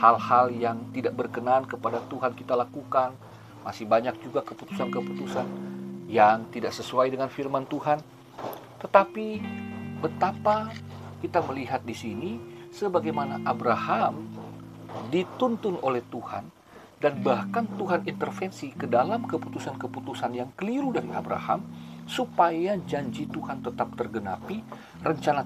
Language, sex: Indonesian, male